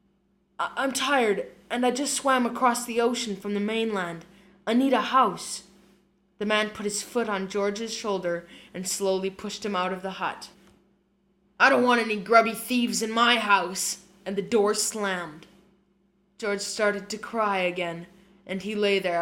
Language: English